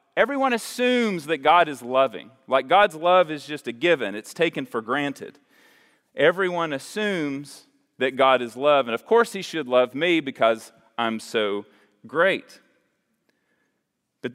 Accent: American